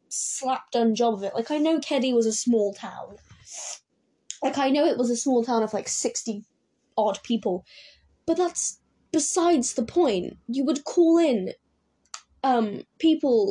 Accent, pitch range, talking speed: British, 220-280 Hz, 160 wpm